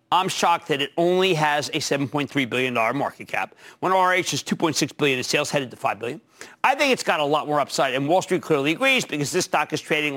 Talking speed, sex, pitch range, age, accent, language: 235 wpm, male, 155-250 Hz, 50-69, American, English